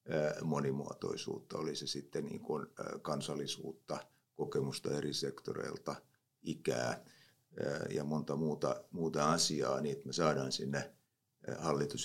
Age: 50-69